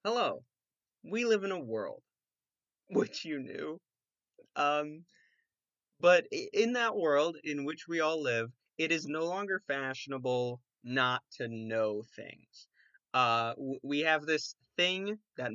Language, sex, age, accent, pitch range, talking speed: English, male, 20-39, American, 125-155 Hz, 130 wpm